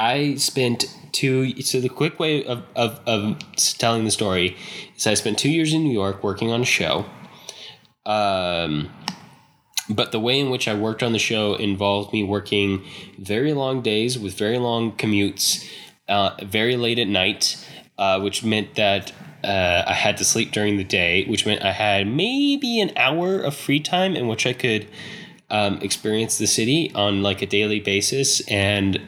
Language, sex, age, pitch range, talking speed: English, male, 10-29, 100-130 Hz, 185 wpm